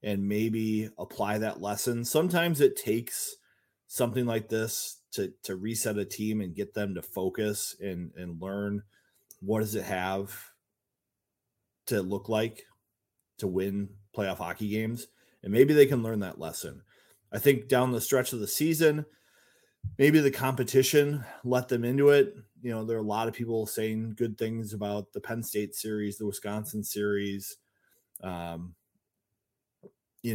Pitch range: 100-120 Hz